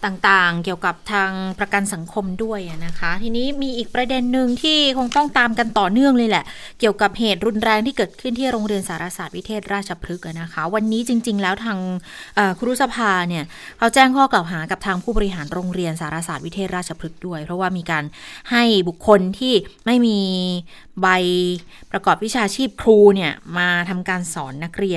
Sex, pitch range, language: female, 175-220 Hz, Thai